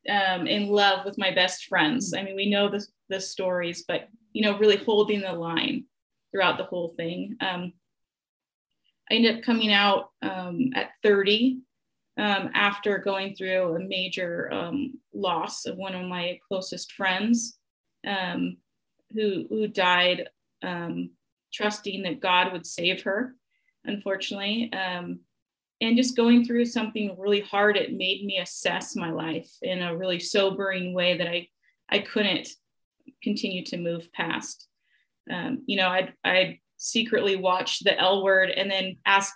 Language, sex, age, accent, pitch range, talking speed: English, female, 30-49, American, 185-225 Hz, 155 wpm